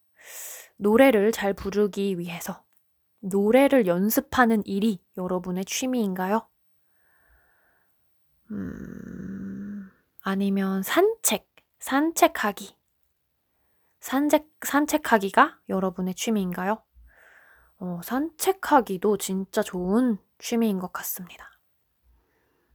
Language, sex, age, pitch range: Korean, female, 20-39, 195-255 Hz